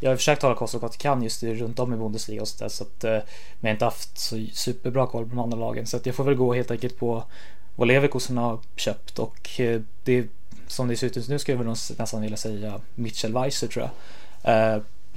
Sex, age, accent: male, 20-39, native